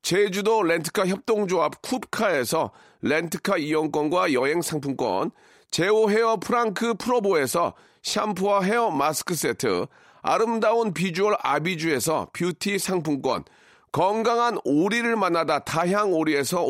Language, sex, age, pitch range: Korean, male, 40-59, 160-225 Hz